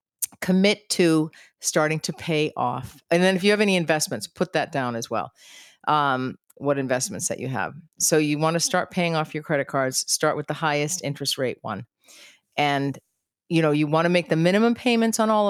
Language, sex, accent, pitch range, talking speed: English, female, American, 145-215 Hz, 205 wpm